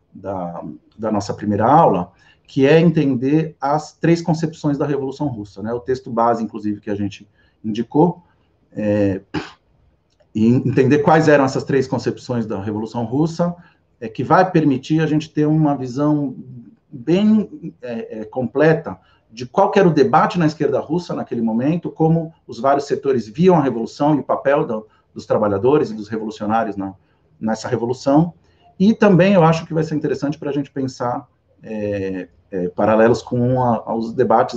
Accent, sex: Brazilian, male